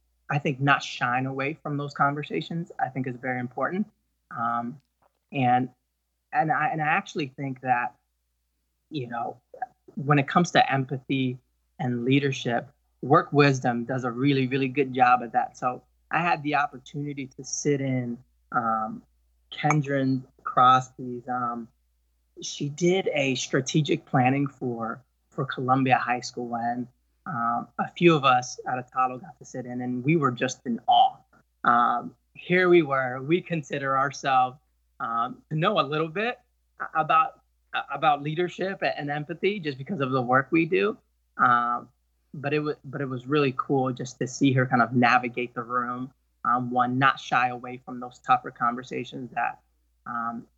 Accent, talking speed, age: American, 160 wpm, 20-39